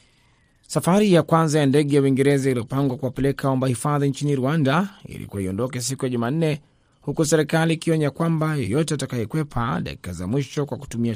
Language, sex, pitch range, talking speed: Swahili, male, 115-150 Hz, 150 wpm